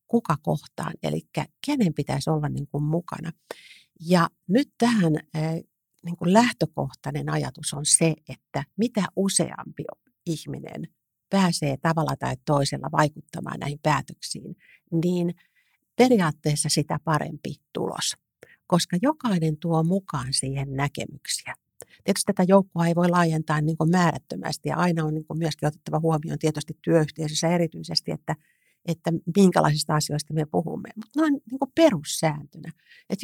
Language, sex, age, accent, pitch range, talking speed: Finnish, female, 60-79, native, 155-190 Hz, 115 wpm